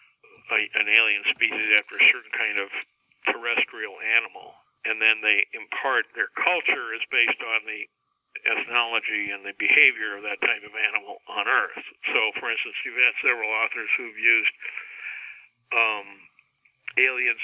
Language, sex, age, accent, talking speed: English, male, 60-79, American, 150 wpm